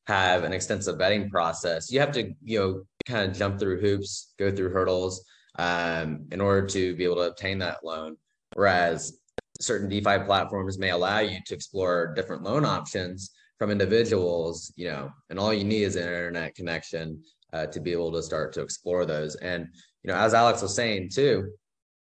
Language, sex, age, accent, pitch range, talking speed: English, male, 20-39, American, 85-105 Hz, 190 wpm